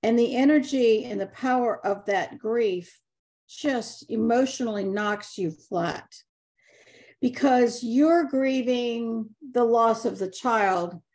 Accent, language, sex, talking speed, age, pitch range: American, English, female, 120 wpm, 50-69, 220-265 Hz